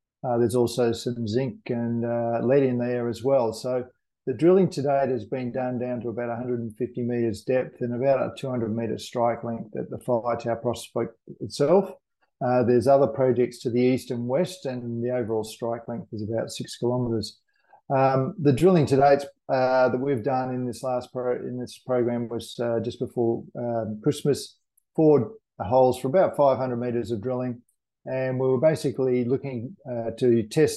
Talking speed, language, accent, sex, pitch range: 185 wpm, English, Australian, male, 120-135 Hz